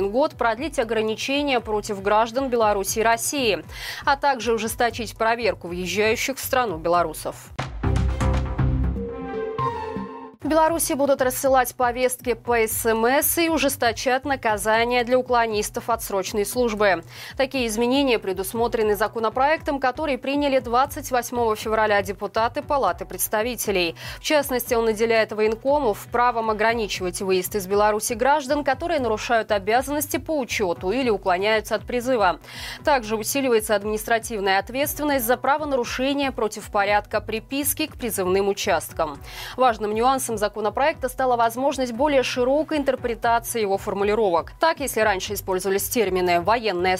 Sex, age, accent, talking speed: female, 20-39, native, 115 wpm